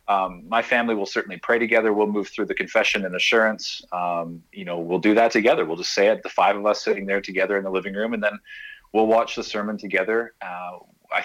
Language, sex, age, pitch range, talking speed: English, male, 30-49, 95-110 Hz, 240 wpm